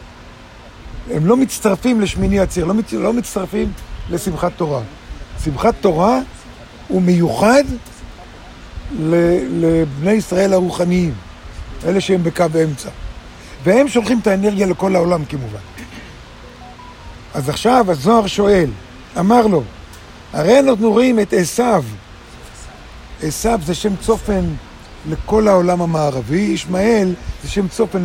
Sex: male